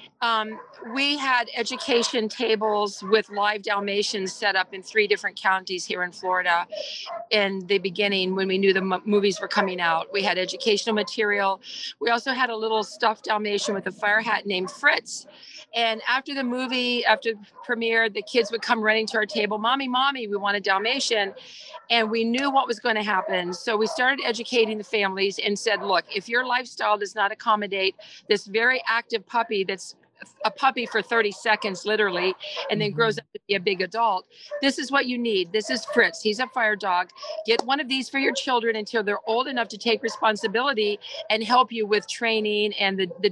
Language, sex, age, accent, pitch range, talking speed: English, female, 40-59, American, 200-240 Hz, 200 wpm